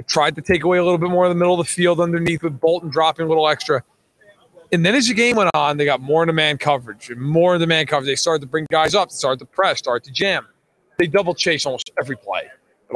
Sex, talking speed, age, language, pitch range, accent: male, 270 wpm, 40-59, English, 155-195 Hz, American